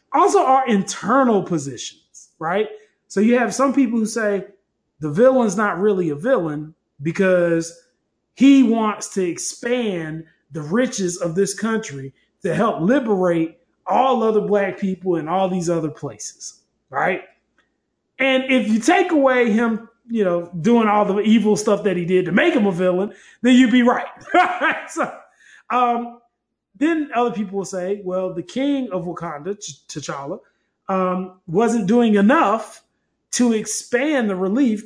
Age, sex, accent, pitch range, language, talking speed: 20-39, male, American, 180-240 Hz, English, 150 wpm